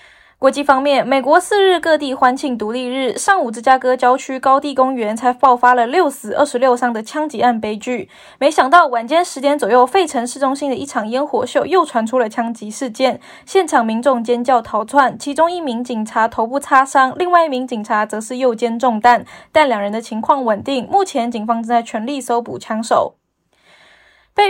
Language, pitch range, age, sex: Chinese, 235-295 Hz, 20-39, female